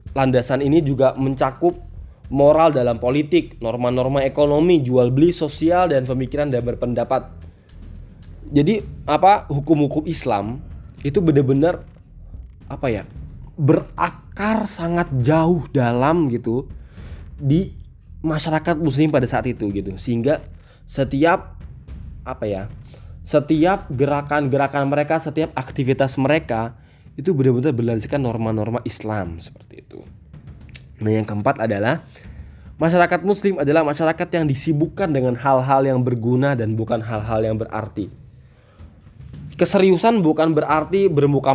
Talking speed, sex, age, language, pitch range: 110 wpm, male, 20-39, Indonesian, 115-155 Hz